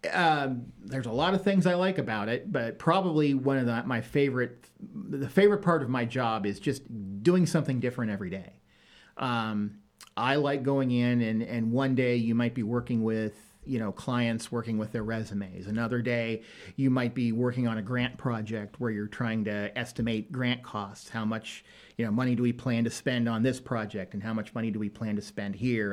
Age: 40-59